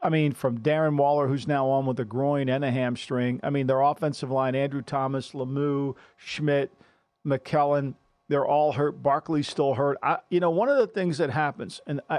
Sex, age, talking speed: male, 50-69, 190 wpm